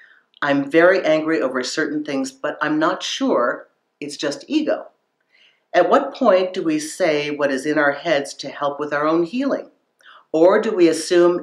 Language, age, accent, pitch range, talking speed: English, 50-69, American, 130-185 Hz, 180 wpm